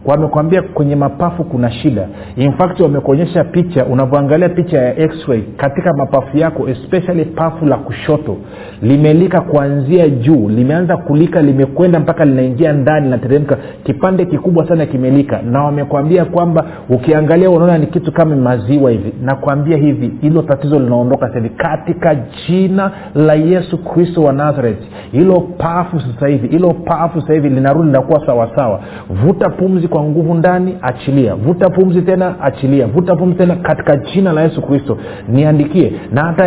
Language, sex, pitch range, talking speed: Swahili, male, 135-170 Hz, 150 wpm